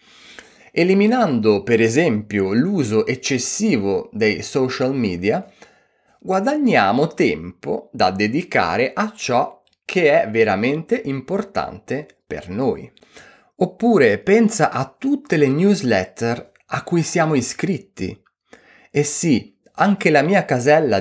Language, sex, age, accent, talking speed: Italian, male, 30-49, native, 105 wpm